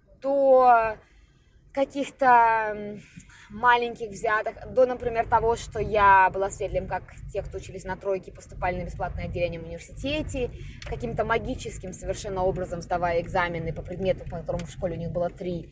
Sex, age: female, 20-39